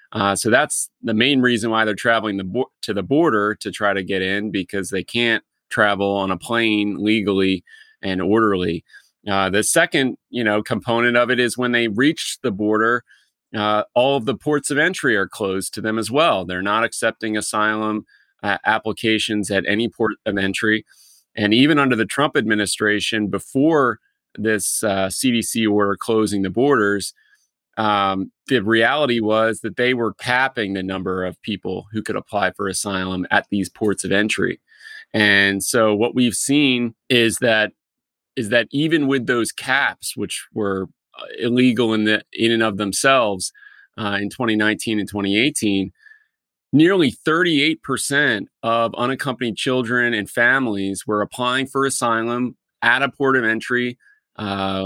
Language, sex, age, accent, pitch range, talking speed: English, male, 30-49, American, 100-120 Hz, 160 wpm